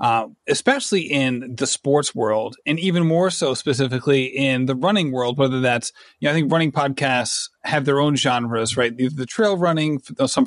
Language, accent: English, American